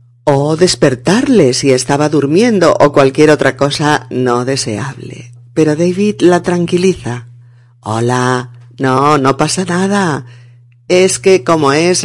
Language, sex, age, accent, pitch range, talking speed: Spanish, female, 40-59, Spanish, 120-165 Hz, 120 wpm